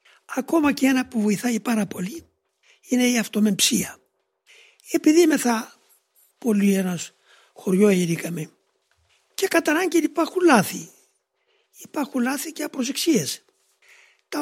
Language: Greek